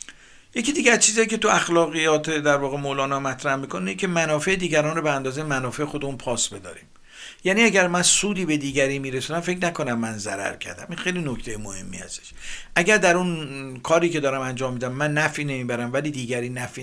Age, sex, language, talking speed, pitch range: 50-69, male, Persian, 195 wpm, 125-165 Hz